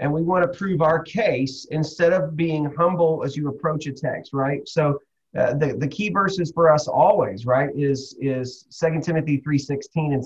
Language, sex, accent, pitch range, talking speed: English, male, American, 140-190 Hz, 200 wpm